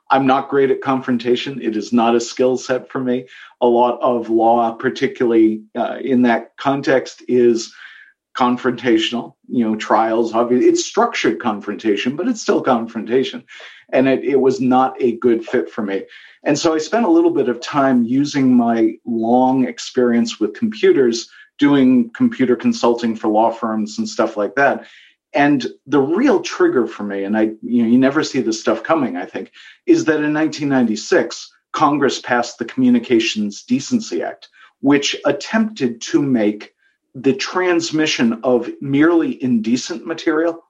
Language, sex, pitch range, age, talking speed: English, male, 120-165 Hz, 40-59, 160 wpm